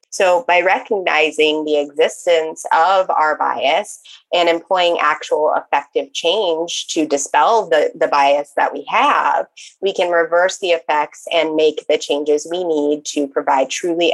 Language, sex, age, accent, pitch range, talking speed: English, female, 20-39, American, 155-260 Hz, 150 wpm